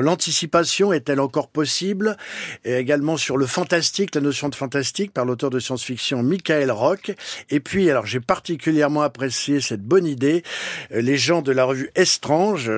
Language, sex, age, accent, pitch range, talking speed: French, male, 50-69, French, 125-165 Hz, 160 wpm